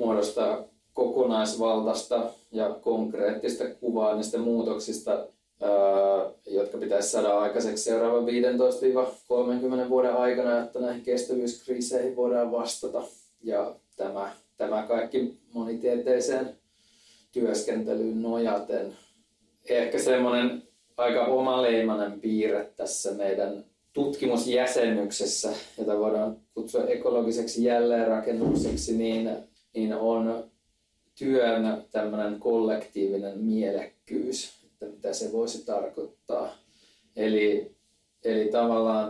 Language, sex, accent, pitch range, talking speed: Finnish, male, native, 110-125 Hz, 85 wpm